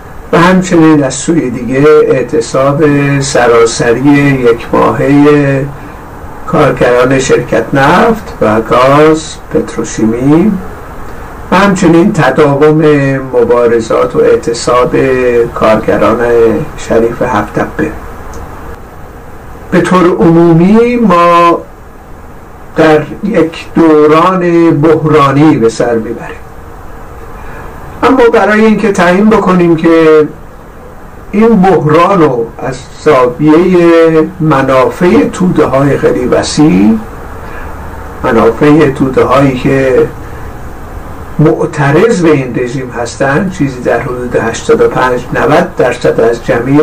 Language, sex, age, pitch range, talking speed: Persian, male, 50-69, 120-170 Hz, 85 wpm